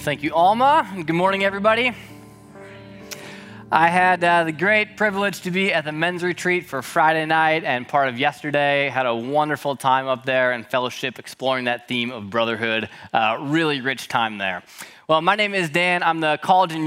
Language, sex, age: English, male, 20-39